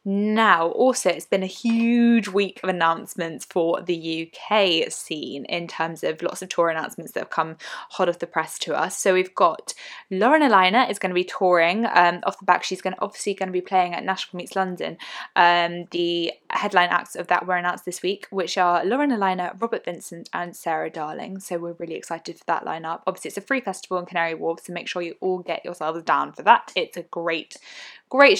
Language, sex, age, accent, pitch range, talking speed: English, female, 10-29, British, 170-195 Hz, 215 wpm